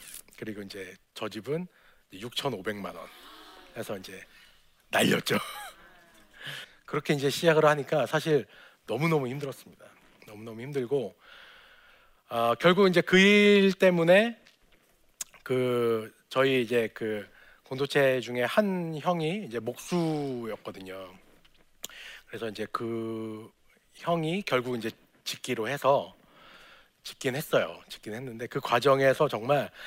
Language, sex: Korean, male